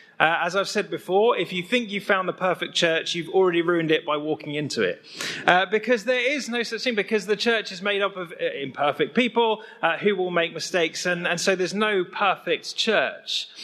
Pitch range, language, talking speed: 165-220 Hz, English, 215 wpm